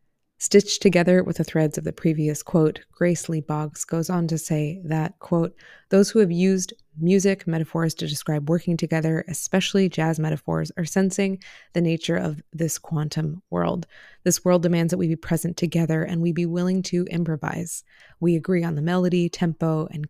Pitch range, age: 155-180 Hz, 20-39